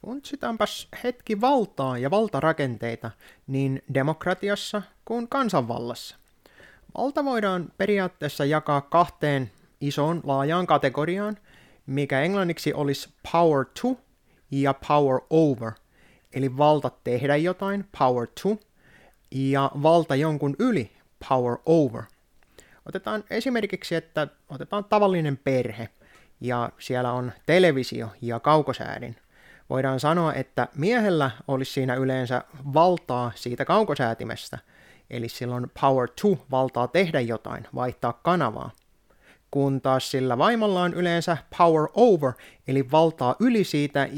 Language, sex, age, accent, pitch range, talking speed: Finnish, male, 30-49, native, 125-170 Hz, 110 wpm